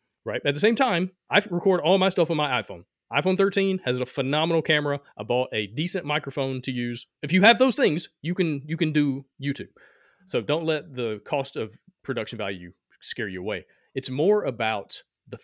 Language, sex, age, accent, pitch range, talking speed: English, male, 30-49, American, 125-165 Hz, 200 wpm